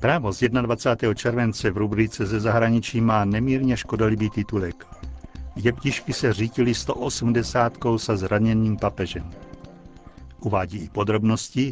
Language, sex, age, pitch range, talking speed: Czech, male, 60-79, 105-125 Hz, 115 wpm